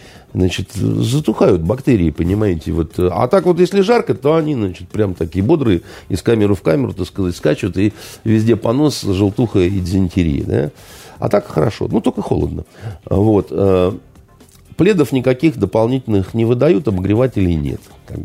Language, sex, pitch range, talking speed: Russian, male, 90-145 Hz, 150 wpm